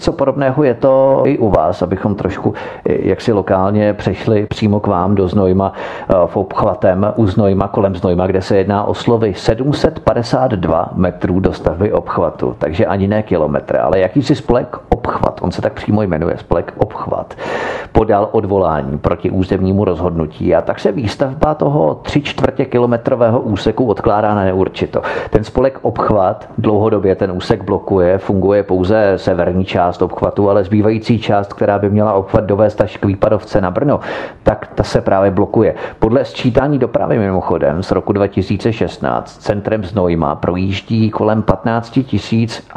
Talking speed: 150 wpm